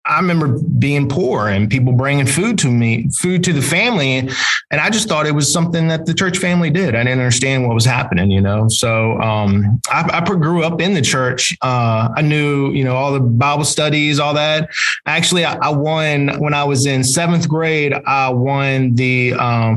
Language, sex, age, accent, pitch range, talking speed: English, male, 20-39, American, 125-160 Hz, 205 wpm